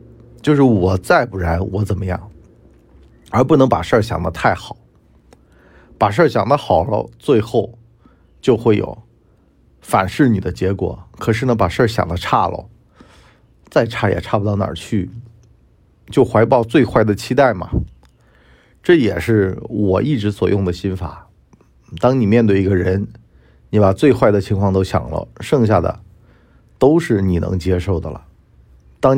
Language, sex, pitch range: Chinese, male, 90-115 Hz